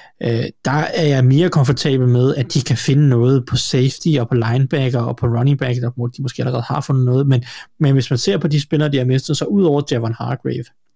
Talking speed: 235 wpm